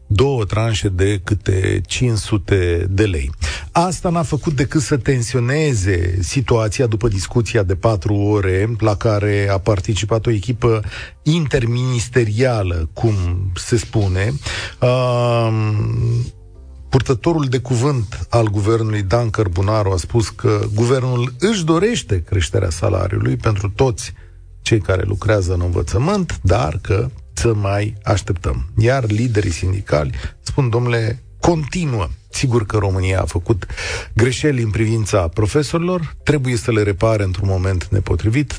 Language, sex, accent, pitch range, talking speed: Romanian, male, native, 95-125 Hz, 120 wpm